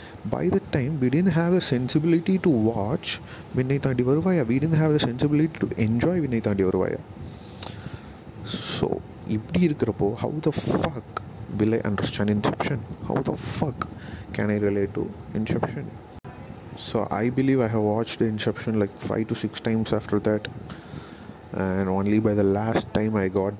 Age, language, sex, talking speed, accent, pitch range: 30-49, English, male, 155 wpm, Indian, 100-125 Hz